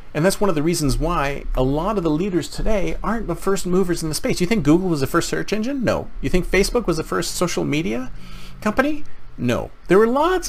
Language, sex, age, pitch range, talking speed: English, male, 40-59, 125-185 Hz, 240 wpm